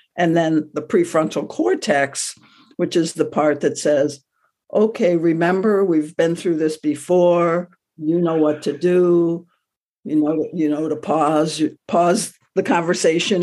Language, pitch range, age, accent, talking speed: English, 155-215 Hz, 60-79, American, 145 wpm